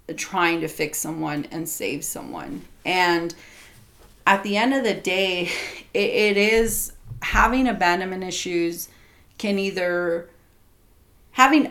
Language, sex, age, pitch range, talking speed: English, female, 30-49, 160-195 Hz, 120 wpm